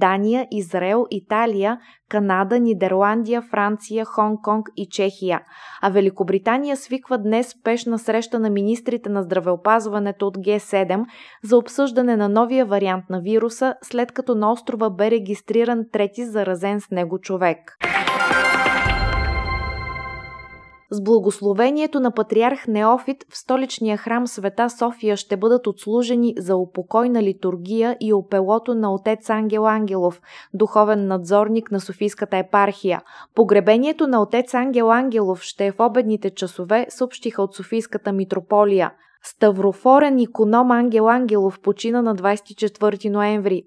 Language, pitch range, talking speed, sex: Bulgarian, 195-235 Hz, 120 wpm, female